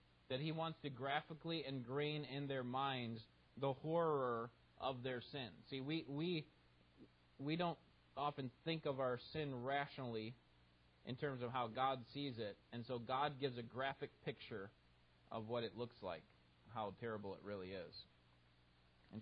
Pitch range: 100-130 Hz